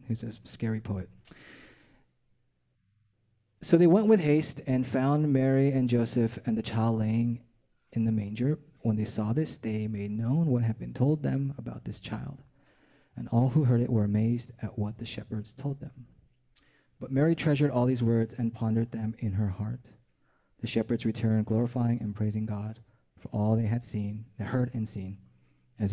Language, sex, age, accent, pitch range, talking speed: English, male, 30-49, American, 110-130 Hz, 180 wpm